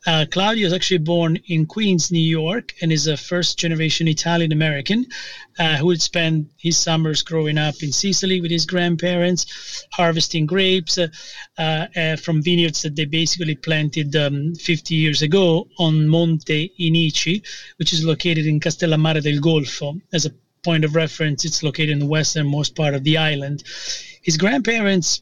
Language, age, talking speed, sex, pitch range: English, 30-49, 155 wpm, male, 155-180 Hz